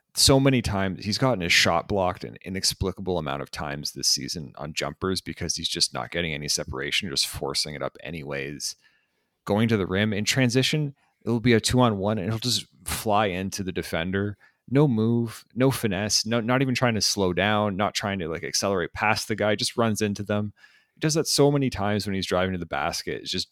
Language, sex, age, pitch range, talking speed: English, male, 30-49, 90-110 Hz, 210 wpm